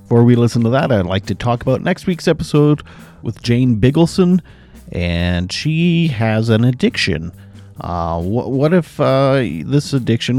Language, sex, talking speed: English, male, 160 wpm